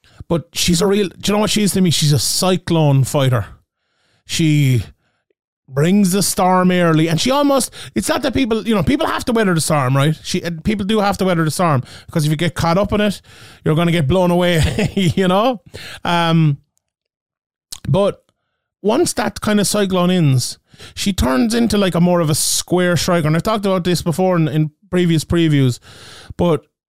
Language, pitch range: English, 150-185 Hz